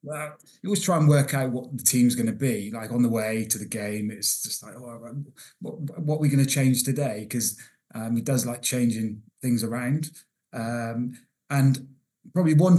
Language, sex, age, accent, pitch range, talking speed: English, male, 30-49, British, 120-135 Hz, 205 wpm